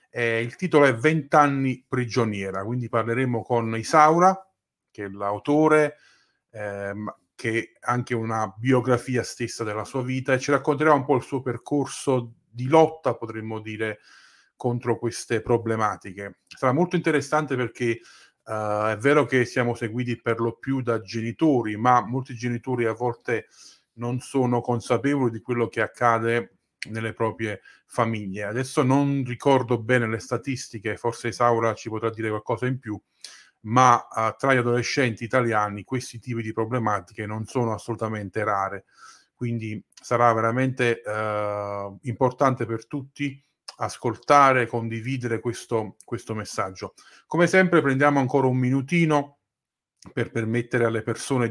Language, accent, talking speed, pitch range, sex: Italian, native, 140 wpm, 110-130 Hz, male